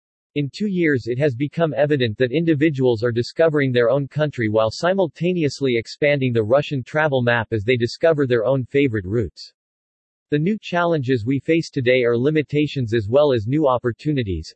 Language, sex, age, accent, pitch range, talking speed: English, male, 40-59, American, 120-155 Hz, 170 wpm